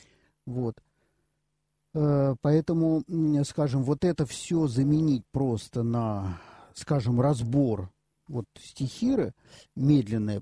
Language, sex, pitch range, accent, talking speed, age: Russian, male, 110-150 Hz, native, 80 wpm, 50-69